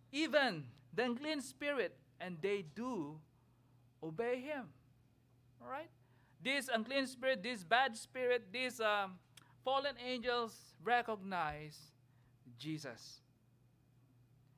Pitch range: 125-180 Hz